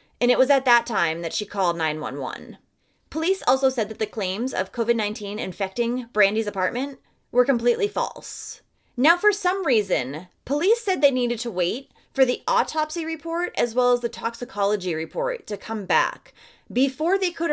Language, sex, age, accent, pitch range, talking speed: English, female, 30-49, American, 225-330 Hz, 170 wpm